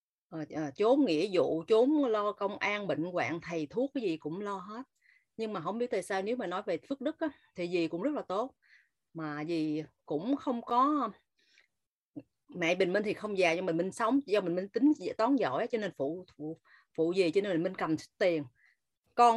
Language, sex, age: Vietnamese, female, 30-49